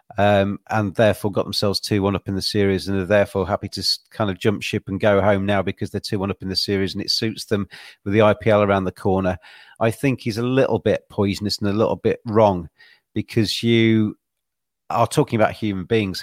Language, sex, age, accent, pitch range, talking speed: English, male, 40-59, British, 95-110 Hz, 215 wpm